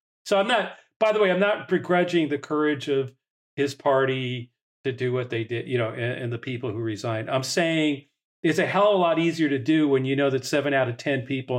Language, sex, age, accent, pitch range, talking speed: English, male, 50-69, American, 130-170 Hz, 245 wpm